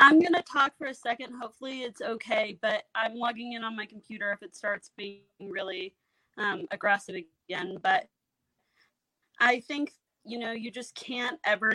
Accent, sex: American, female